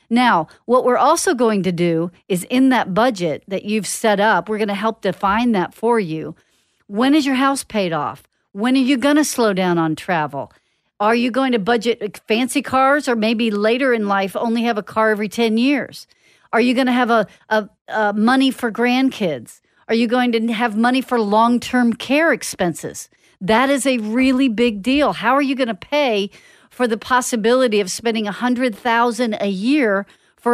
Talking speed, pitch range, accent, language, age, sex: 195 wpm, 205-250 Hz, American, English, 50-69, female